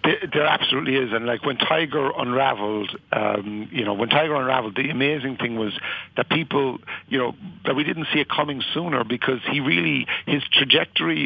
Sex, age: male, 60-79